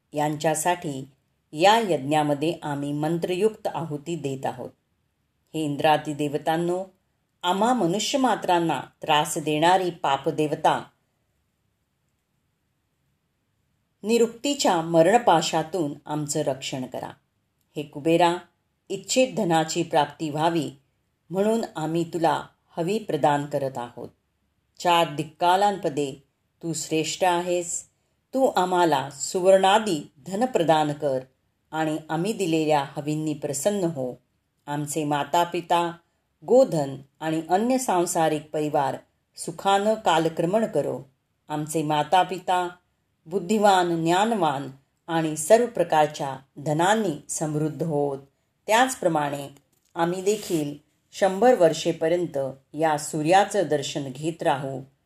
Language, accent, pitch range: Marathi, native, 145-180 Hz